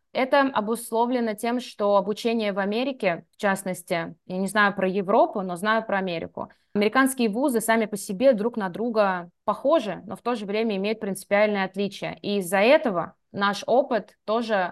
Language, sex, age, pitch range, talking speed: Russian, female, 20-39, 185-225 Hz, 165 wpm